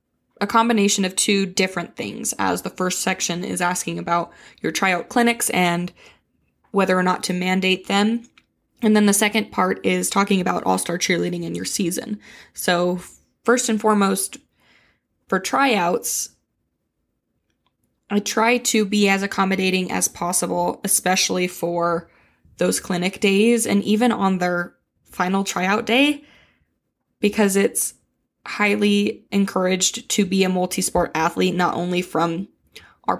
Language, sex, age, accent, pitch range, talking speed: English, female, 20-39, American, 180-205 Hz, 135 wpm